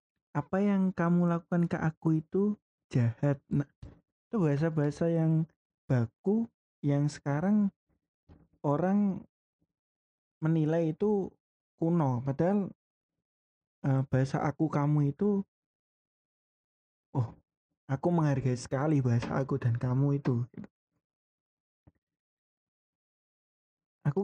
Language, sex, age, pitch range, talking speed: Indonesian, male, 20-39, 135-175 Hz, 85 wpm